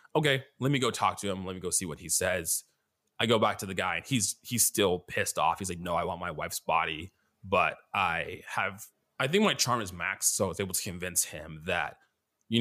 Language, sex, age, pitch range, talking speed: English, male, 20-39, 90-135 Hz, 245 wpm